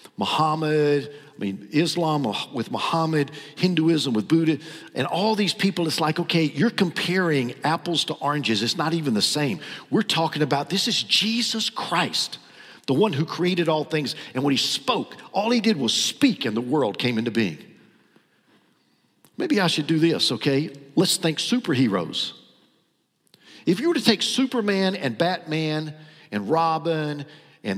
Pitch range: 145-205 Hz